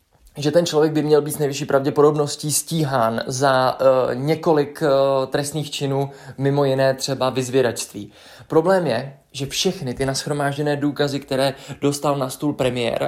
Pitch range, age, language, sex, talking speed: 130-150 Hz, 20-39, Czech, male, 145 wpm